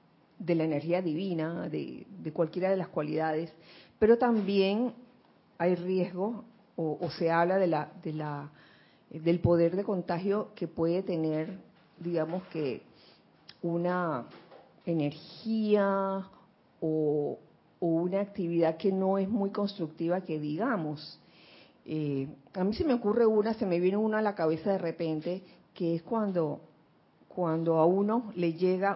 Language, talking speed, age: Spanish, 140 wpm, 40-59